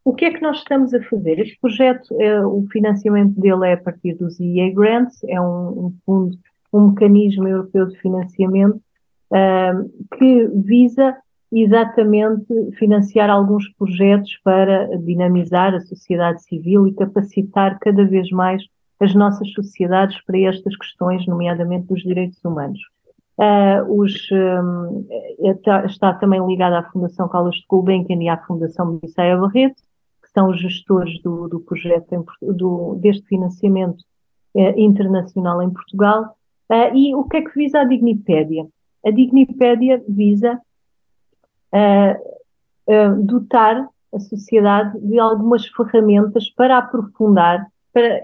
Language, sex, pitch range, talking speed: Portuguese, female, 185-225 Hz, 125 wpm